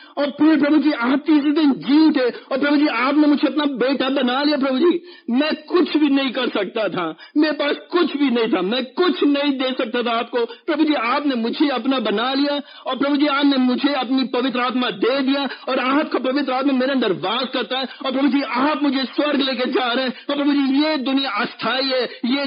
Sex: male